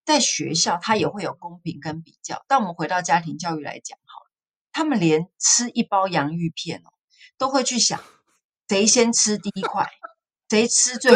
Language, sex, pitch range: Chinese, female, 170-245 Hz